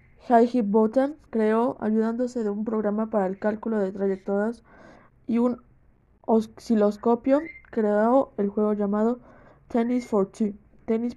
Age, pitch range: 20-39, 205-240 Hz